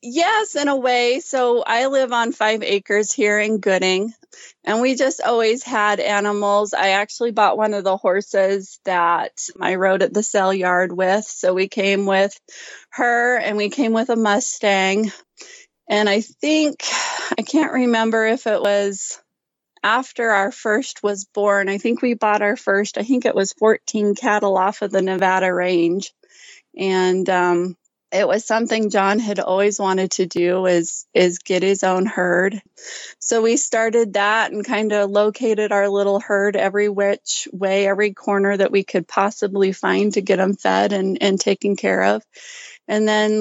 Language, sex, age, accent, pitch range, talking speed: English, female, 30-49, American, 195-230 Hz, 175 wpm